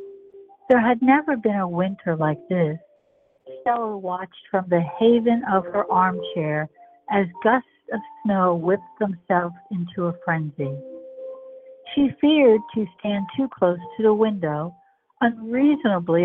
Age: 60-79